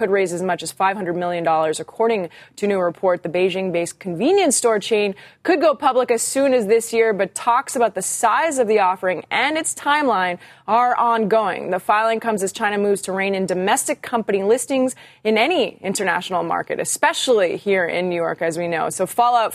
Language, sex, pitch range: English, female, 180-230 Hz